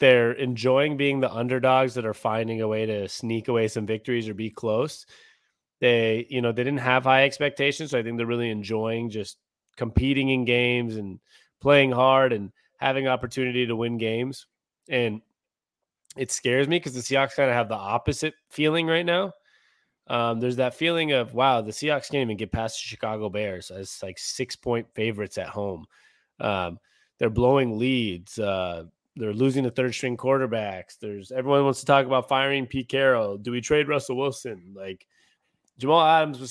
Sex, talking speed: male, 180 wpm